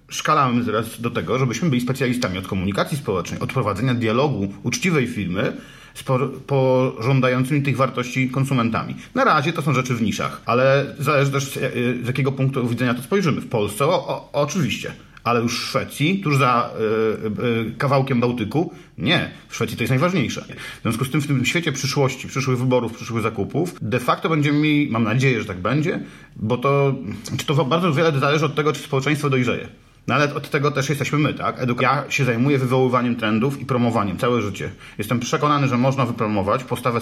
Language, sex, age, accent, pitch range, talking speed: Polish, male, 40-59, native, 120-145 Hz, 175 wpm